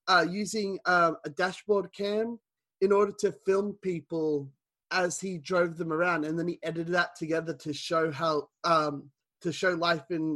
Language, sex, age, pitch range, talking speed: English, male, 30-49, 160-205 Hz, 180 wpm